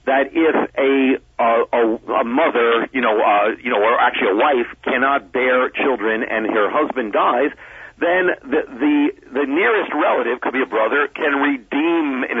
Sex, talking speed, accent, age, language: male, 175 wpm, American, 50-69, English